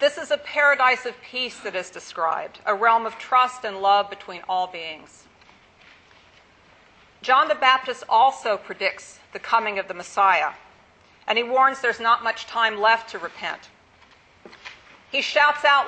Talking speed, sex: 155 wpm, female